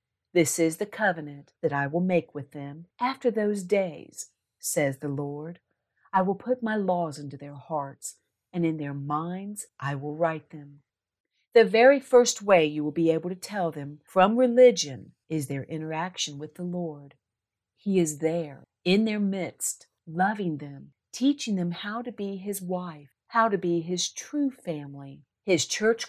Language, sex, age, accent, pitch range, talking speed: English, female, 50-69, American, 150-205 Hz, 170 wpm